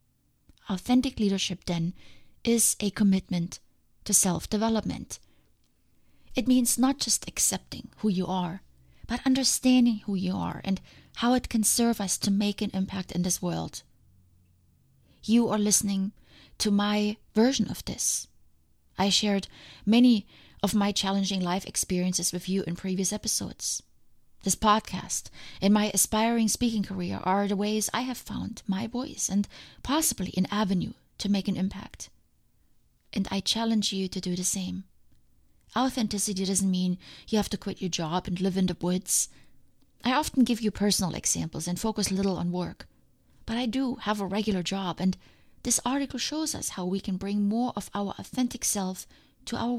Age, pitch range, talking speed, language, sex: 20-39, 185-225 Hz, 160 wpm, English, female